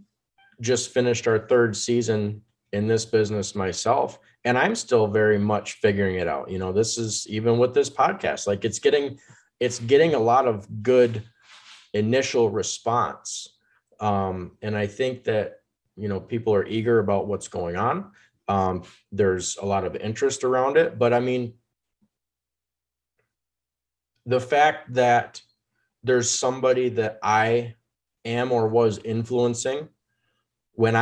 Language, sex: English, male